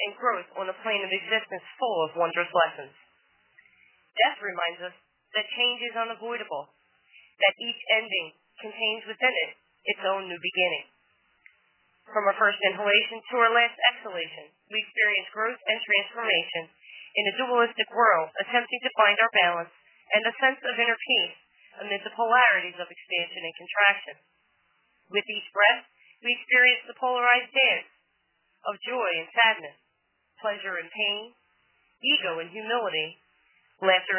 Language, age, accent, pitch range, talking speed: English, 30-49, American, 180-230 Hz, 145 wpm